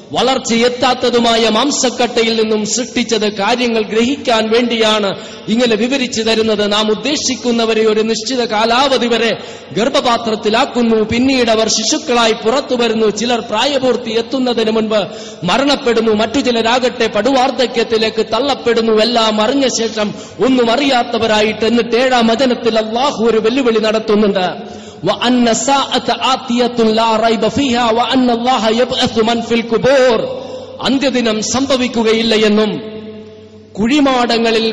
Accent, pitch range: native, 210-240 Hz